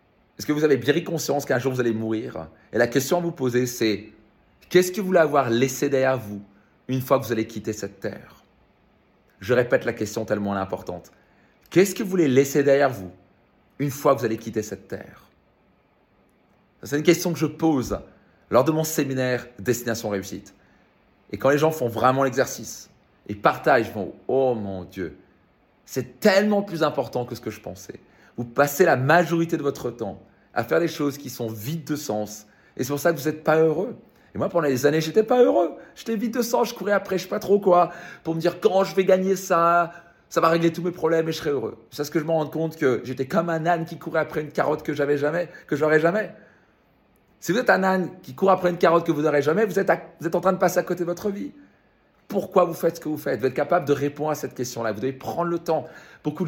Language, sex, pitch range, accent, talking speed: French, male, 125-175 Hz, French, 240 wpm